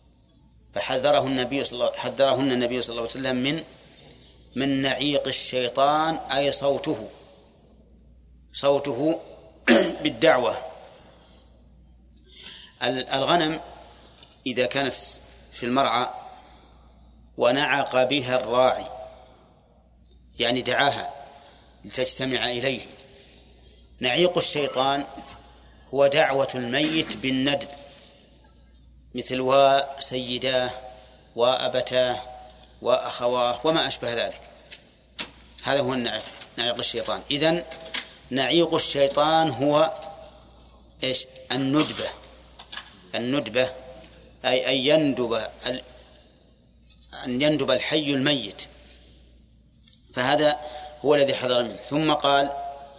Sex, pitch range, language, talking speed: male, 100-140 Hz, Arabic, 80 wpm